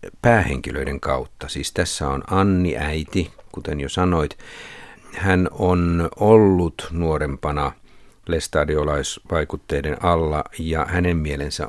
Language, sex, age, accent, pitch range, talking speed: Finnish, male, 50-69, native, 75-90 Hz, 100 wpm